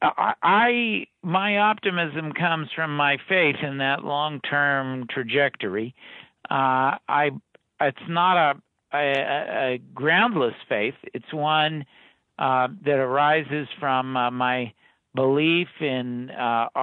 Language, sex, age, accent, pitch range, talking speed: English, male, 60-79, American, 130-170 Hz, 110 wpm